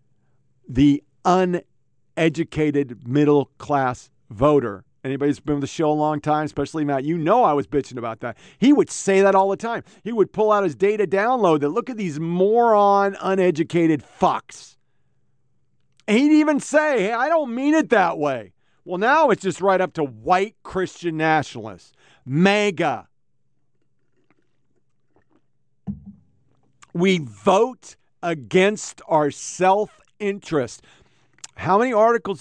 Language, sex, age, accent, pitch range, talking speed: English, male, 40-59, American, 135-195 Hz, 135 wpm